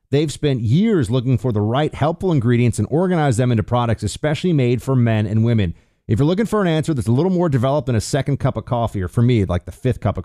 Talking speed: 265 wpm